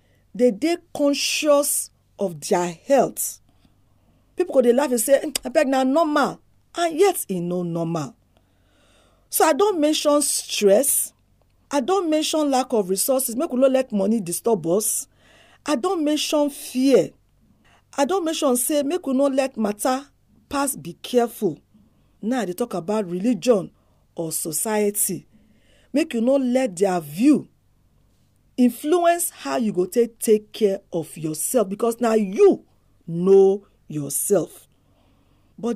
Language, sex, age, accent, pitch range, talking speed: English, female, 40-59, Nigerian, 170-280 Hz, 140 wpm